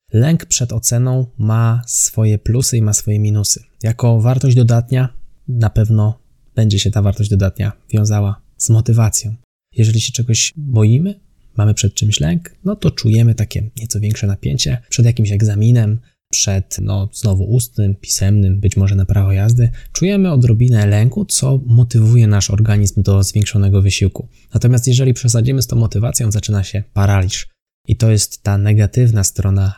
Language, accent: Polish, native